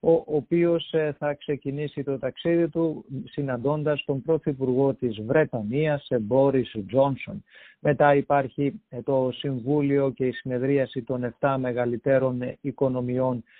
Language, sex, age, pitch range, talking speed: English, male, 50-69, 130-150 Hz, 110 wpm